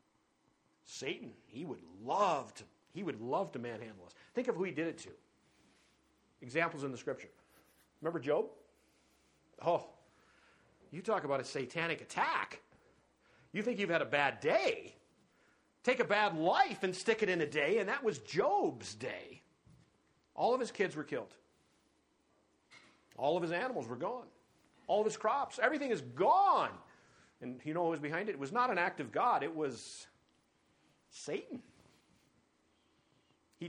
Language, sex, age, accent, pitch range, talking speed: English, male, 50-69, American, 145-205 Hz, 155 wpm